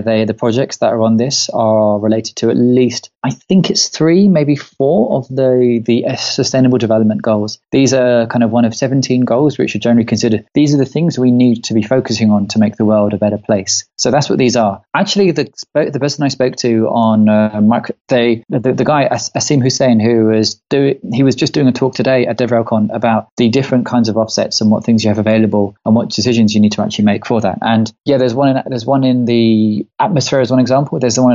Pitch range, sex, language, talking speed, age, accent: 110-135 Hz, male, English, 235 wpm, 20-39, British